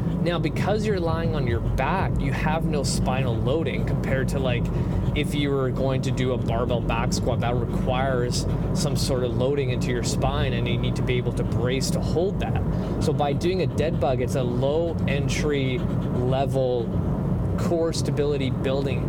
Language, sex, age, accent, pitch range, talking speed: English, male, 20-39, American, 135-170 Hz, 185 wpm